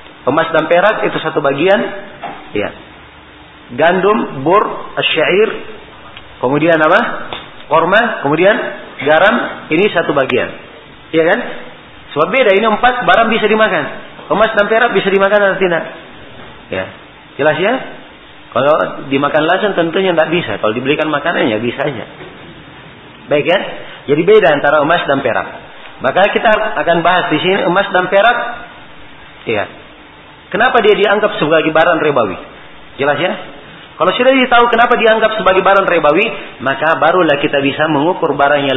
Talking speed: 140 wpm